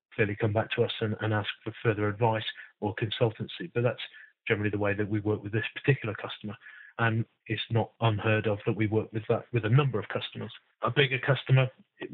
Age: 30-49